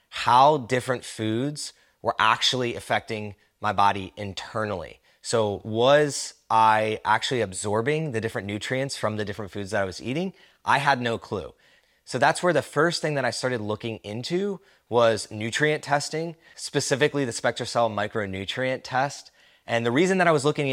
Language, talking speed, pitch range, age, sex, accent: English, 160 wpm, 110-140 Hz, 20-39, male, American